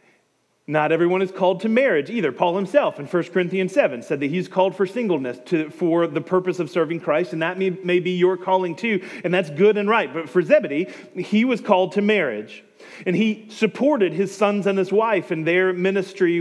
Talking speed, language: 210 wpm, English